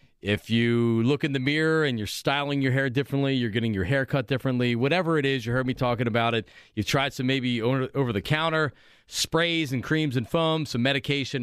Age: 40-59